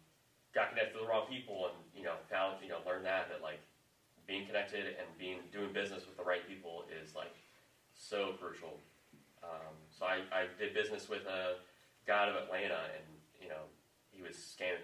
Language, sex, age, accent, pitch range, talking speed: English, male, 30-49, American, 85-95 Hz, 180 wpm